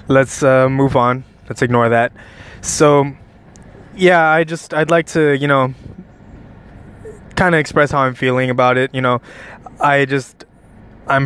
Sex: male